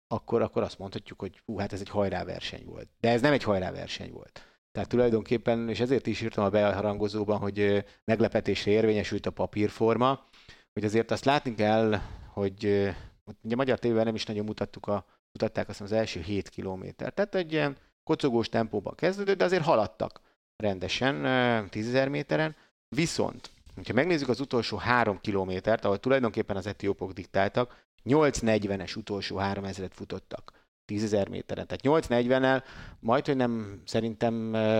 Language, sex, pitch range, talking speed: Hungarian, male, 100-120 Hz, 145 wpm